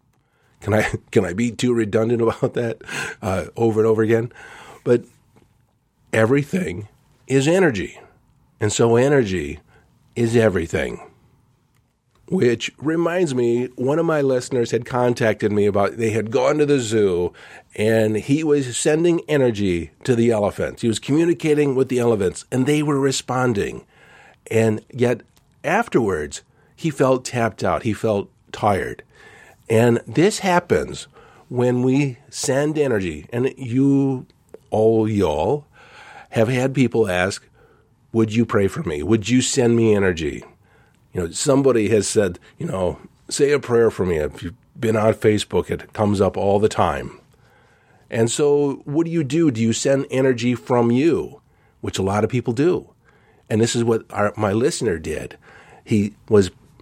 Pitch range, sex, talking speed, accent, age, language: 110-135 Hz, male, 150 wpm, American, 50-69, English